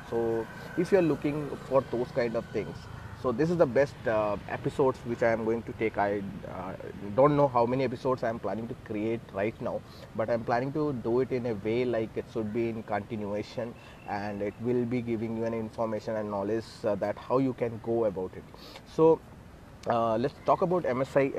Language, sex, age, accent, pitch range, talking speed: Malayalam, male, 20-39, native, 115-130 Hz, 215 wpm